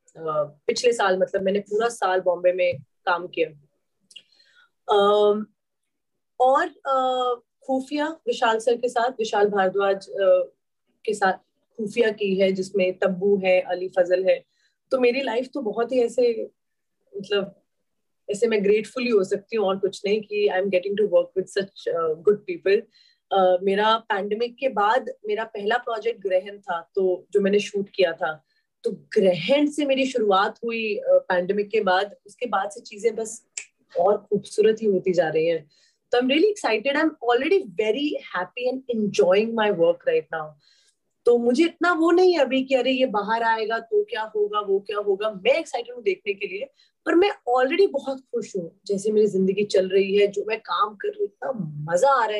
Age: 30-49